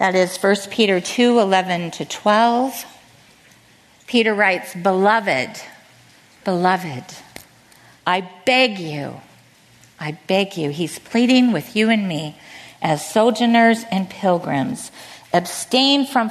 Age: 50-69